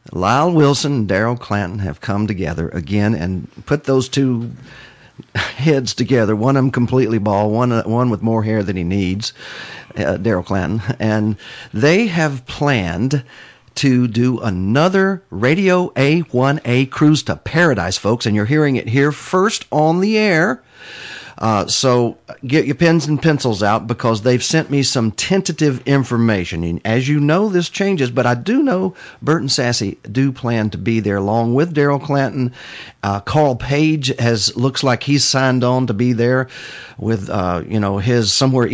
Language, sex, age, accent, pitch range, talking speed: English, male, 50-69, American, 110-145 Hz, 165 wpm